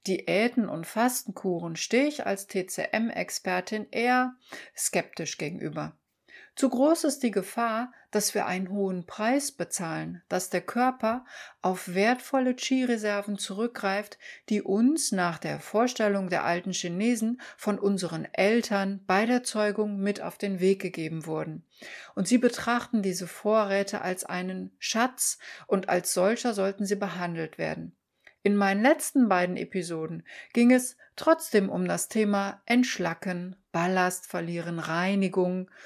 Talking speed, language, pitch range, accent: 130 wpm, German, 180-235 Hz, German